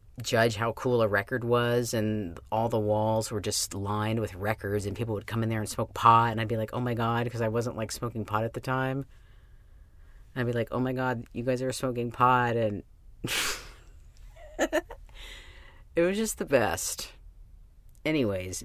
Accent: American